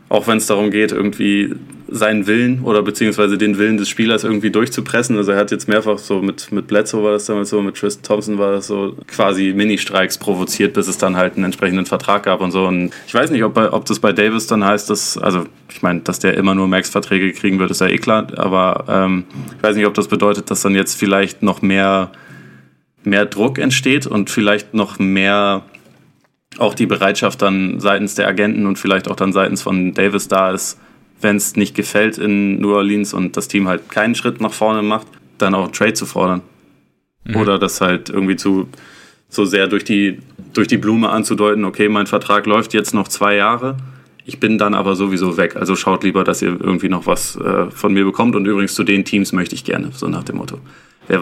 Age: 20-39